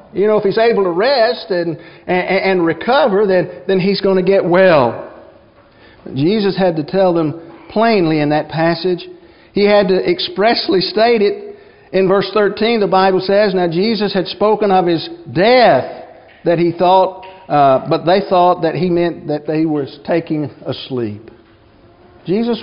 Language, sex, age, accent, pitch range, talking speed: English, male, 50-69, American, 170-215 Hz, 165 wpm